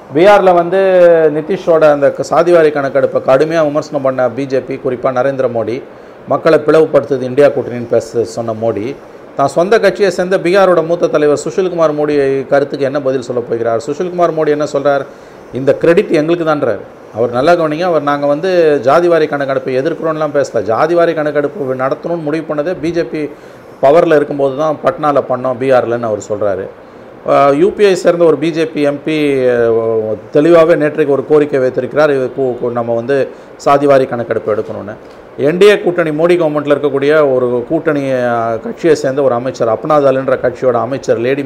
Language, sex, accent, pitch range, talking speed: Tamil, male, native, 130-165 Hz, 140 wpm